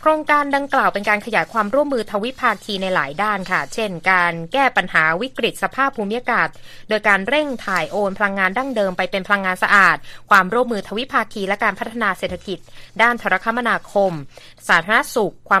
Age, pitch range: 20-39, 180-230 Hz